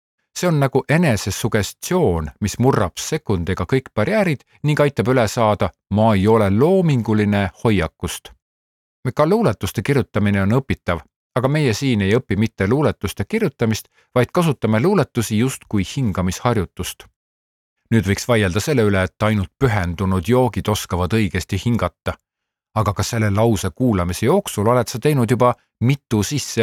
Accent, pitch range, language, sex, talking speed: Finnish, 100-130 Hz, Czech, male, 140 wpm